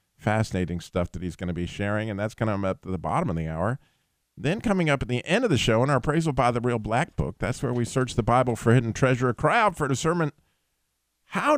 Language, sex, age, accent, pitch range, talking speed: English, male, 50-69, American, 105-160 Hz, 255 wpm